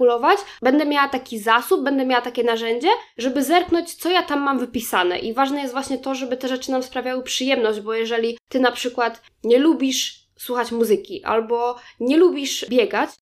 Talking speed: 175 wpm